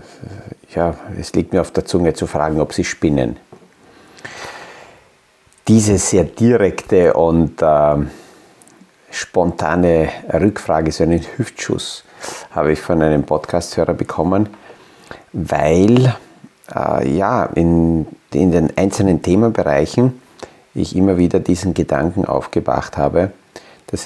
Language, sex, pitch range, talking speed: German, male, 80-95 Hz, 110 wpm